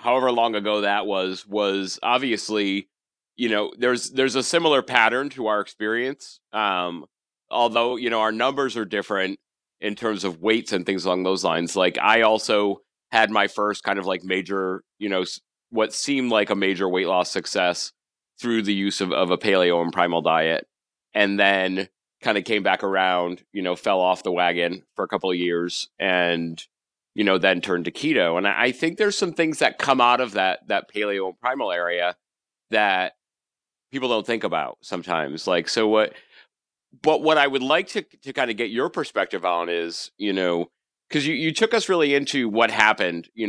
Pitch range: 95-125 Hz